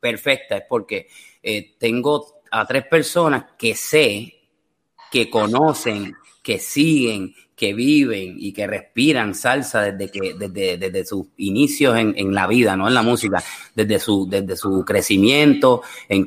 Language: English